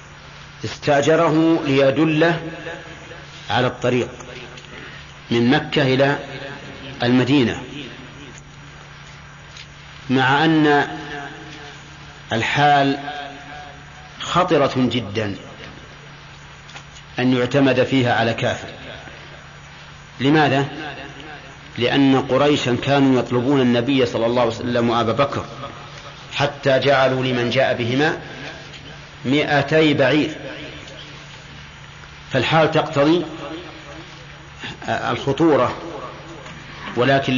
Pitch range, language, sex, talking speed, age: 125-145 Hz, Arabic, male, 65 wpm, 50-69